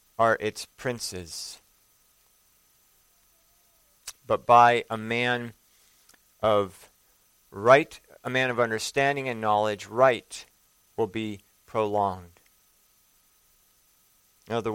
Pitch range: 110-130 Hz